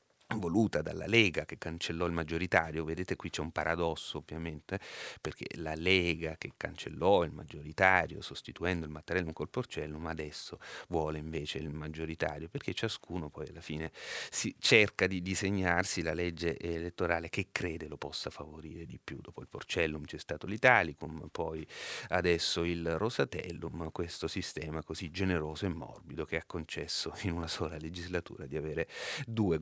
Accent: native